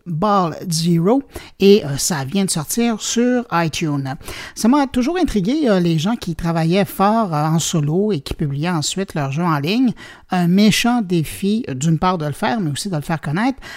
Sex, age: male, 50-69